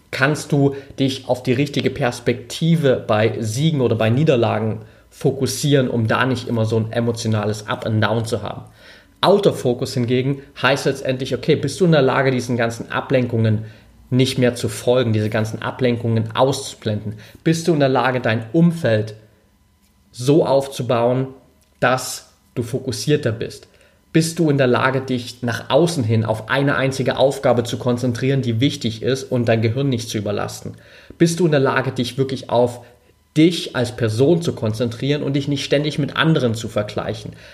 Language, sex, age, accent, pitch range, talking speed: German, male, 30-49, German, 115-145 Hz, 165 wpm